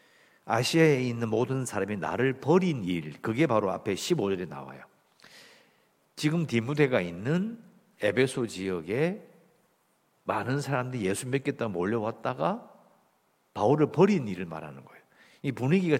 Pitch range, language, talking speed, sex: 105-160 Hz, English, 110 wpm, male